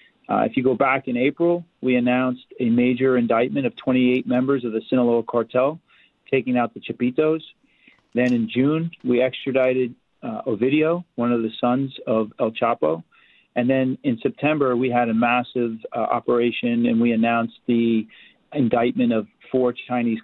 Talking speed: 165 wpm